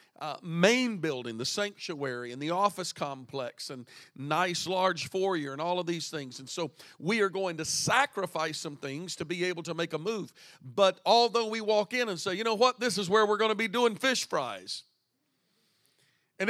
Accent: American